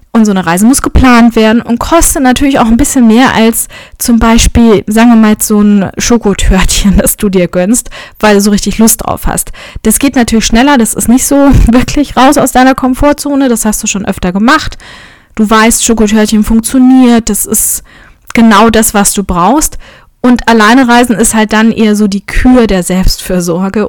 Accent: German